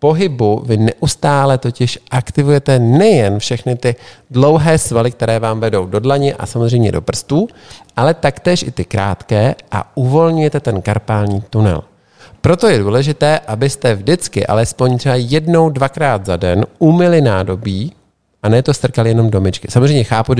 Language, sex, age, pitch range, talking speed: Czech, male, 40-59, 105-140 Hz, 150 wpm